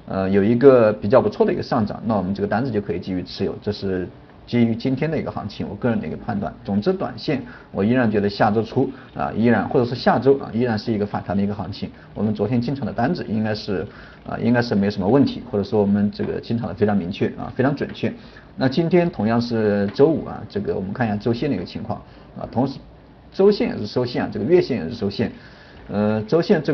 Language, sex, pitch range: Chinese, male, 100-135 Hz